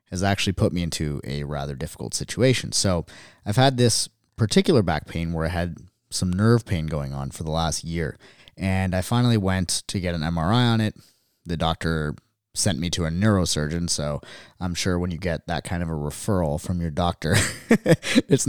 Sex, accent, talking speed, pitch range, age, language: male, American, 195 wpm, 80-105 Hz, 30-49, English